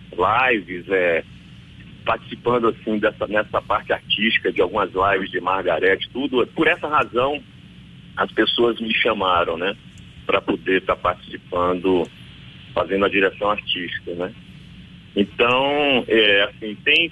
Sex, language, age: male, Portuguese, 40-59